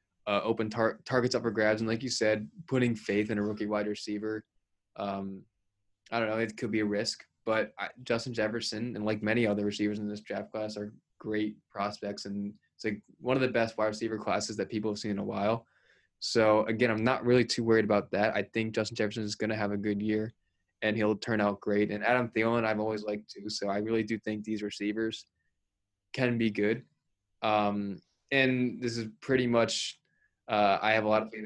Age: 20-39